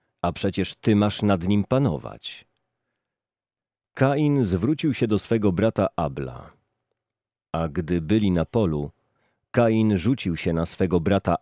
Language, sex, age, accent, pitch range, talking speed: Polish, male, 40-59, native, 90-115 Hz, 130 wpm